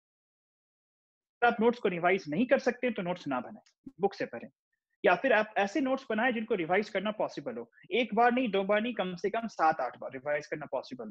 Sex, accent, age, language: male, native, 30-49, Hindi